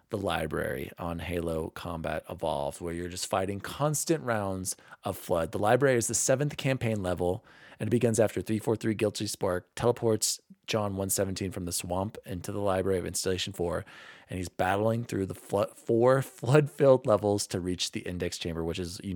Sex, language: male, English